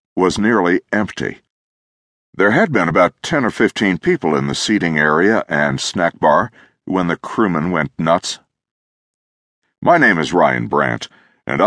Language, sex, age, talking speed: English, male, 60-79, 150 wpm